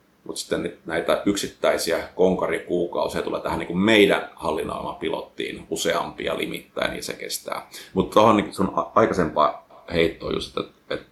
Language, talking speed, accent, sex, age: Finnish, 140 wpm, native, male, 30-49